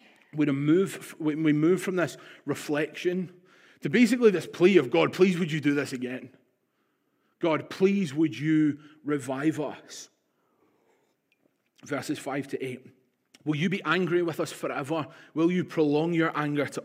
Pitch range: 145-185 Hz